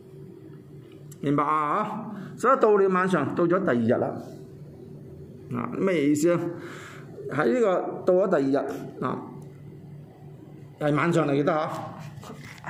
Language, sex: Chinese, male